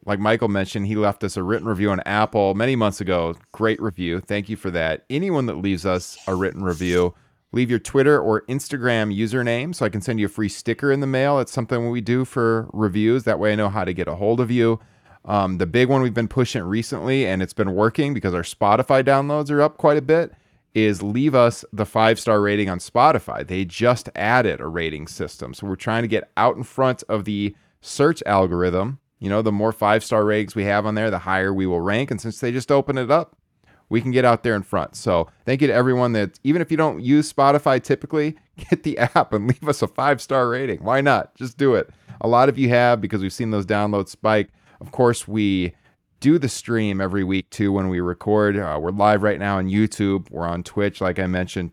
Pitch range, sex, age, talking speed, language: 100-125 Hz, male, 30-49, 230 wpm, English